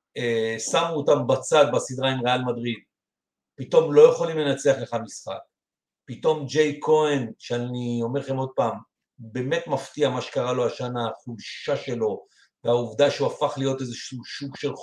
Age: 50-69